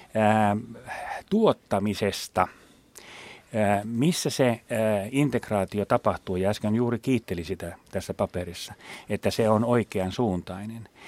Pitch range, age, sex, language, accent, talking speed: 100-125 Hz, 40-59, male, Finnish, native, 105 wpm